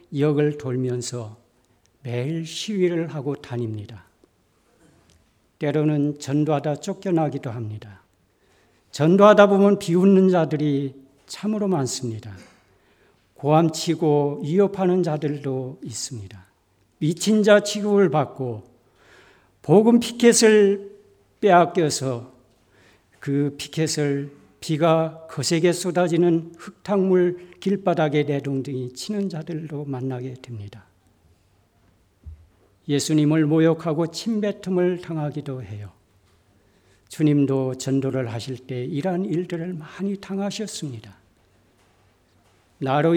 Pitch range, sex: 120-175 Hz, male